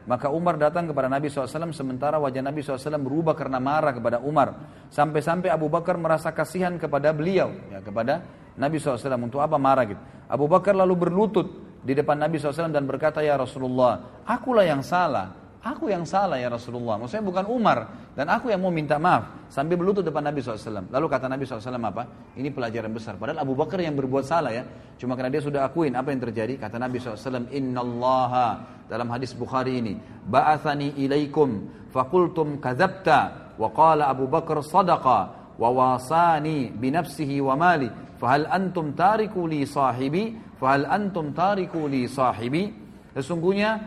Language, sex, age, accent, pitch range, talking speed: Italian, male, 40-59, Indonesian, 130-175 Hz, 160 wpm